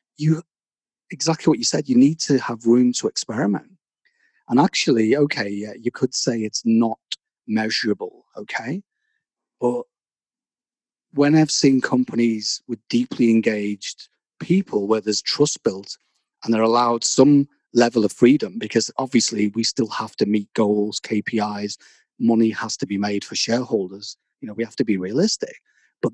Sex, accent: male, British